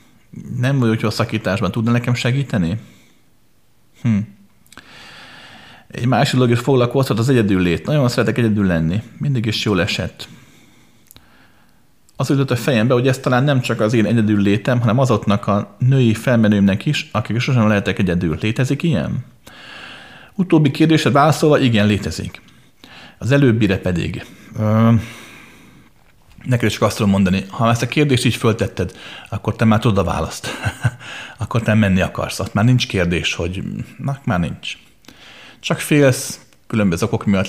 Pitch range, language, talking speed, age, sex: 100-125 Hz, Hungarian, 145 wpm, 40-59, male